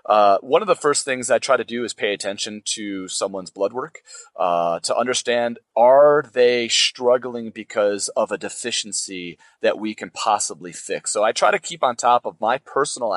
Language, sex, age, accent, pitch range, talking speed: English, male, 30-49, American, 115-165 Hz, 190 wpm